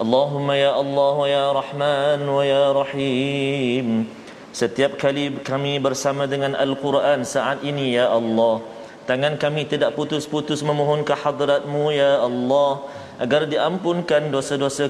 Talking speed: 120 wpm